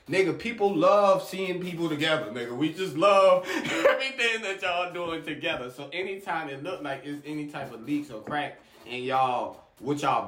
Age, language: 20-39, English